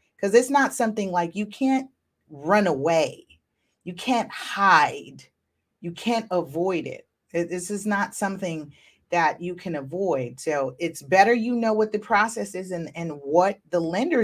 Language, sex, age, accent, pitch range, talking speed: English, female, 40-59, American, 160-200 Hz, 160 wpm